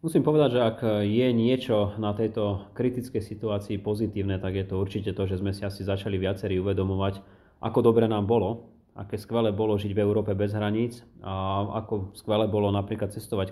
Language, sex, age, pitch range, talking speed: Slovak, male, 30-49, 100-110 Hz, 180 wpm